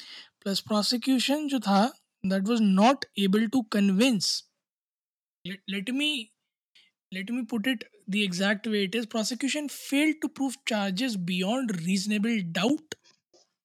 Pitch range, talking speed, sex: 195-245 Hz, 130 wpm, male